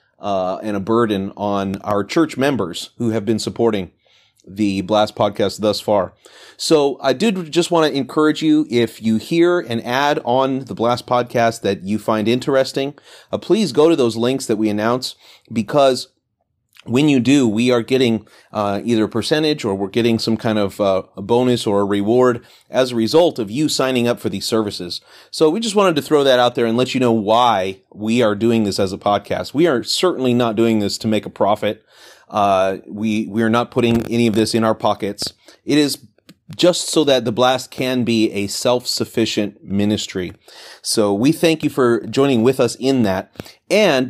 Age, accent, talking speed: 30-49, American, 200 wpm